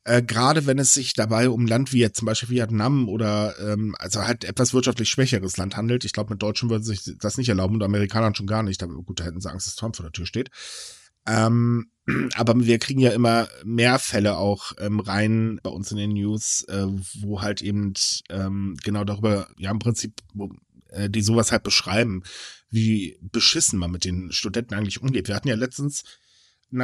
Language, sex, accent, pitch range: German, male, German, 105-130 Hz